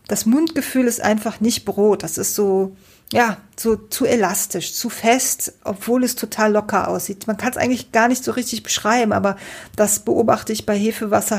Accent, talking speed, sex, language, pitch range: German, 185 wpm, female, German, 195-235 Hz